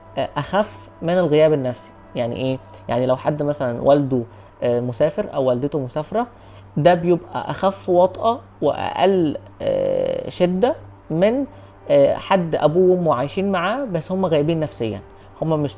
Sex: female